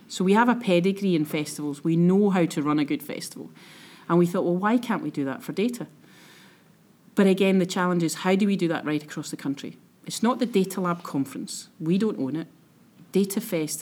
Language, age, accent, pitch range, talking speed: English, 30-49, British, 150-185 Hz, 220 wpm